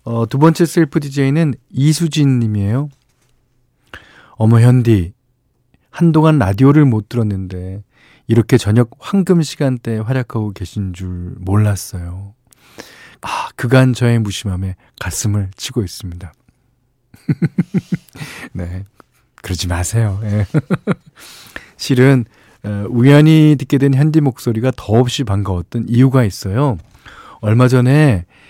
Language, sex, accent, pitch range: Korean, male, native, 100-130 Hz